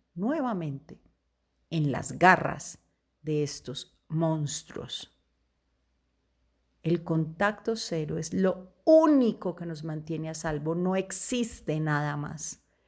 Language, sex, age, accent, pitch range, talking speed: Spanish, female, 40-59, Colombian, 150-200 Hz, 100 wpm